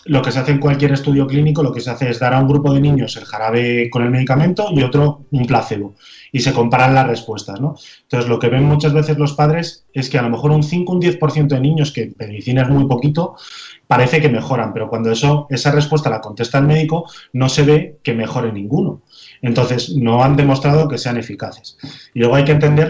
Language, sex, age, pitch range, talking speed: Spanish, male, 30-49, 120-150 Hz, 235 wpm